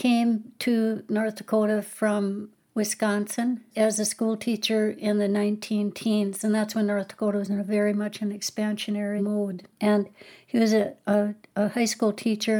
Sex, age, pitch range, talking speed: female, 60-79, 200-220 Hz, 170 wpm